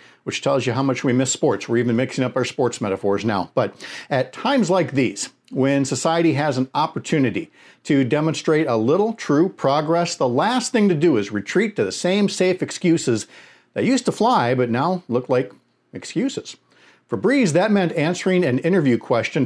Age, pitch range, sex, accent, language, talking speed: 50-69, 115-165 Hz, male, American, English, 190 wpm